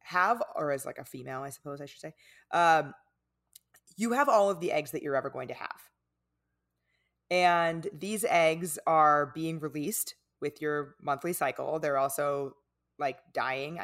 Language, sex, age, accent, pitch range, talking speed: English, female, 20-39, American, 135-185 Hz, 165 wpm